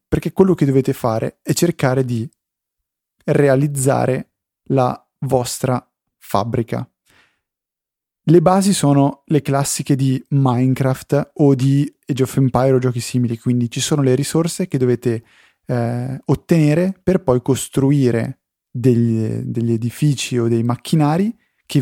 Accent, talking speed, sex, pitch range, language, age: native, 125 wpm, male, 120-145 Hz, Italian, 30-49